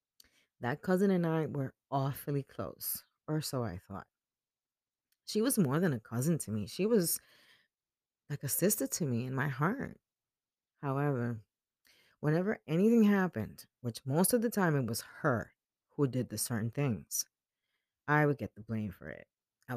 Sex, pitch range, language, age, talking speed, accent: female, 120-175 Hz, English, 30-49, 165 wpm, American